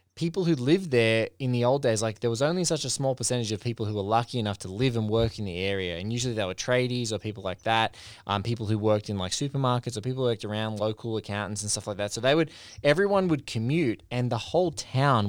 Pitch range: 105-135 Hz